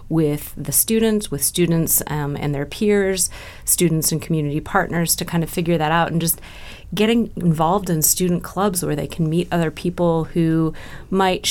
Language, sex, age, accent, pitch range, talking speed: English, female, 30-49, American, 155-180 Hz, 175 wpm